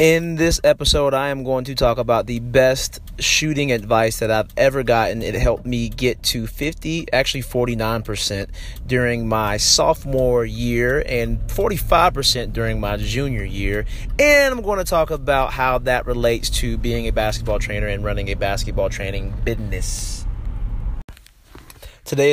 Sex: male